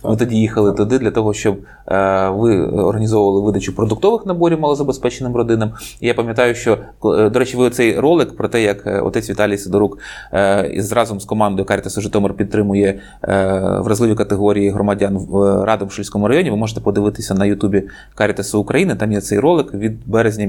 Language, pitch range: Ukrainian, 105-125 Hz